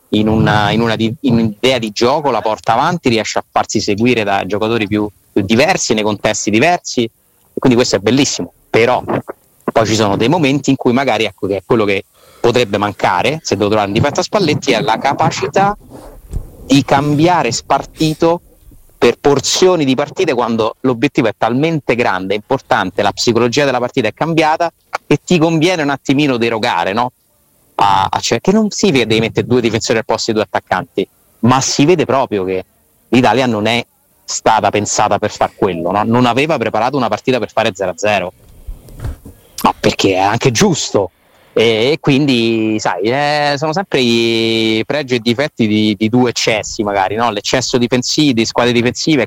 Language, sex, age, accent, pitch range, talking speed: Italian, male, 30-49, native, 105-140 Hz, 175 wpm